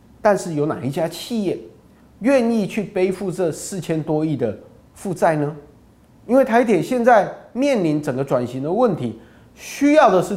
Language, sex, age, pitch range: Chinese, male, 30-49, 145-235 Hz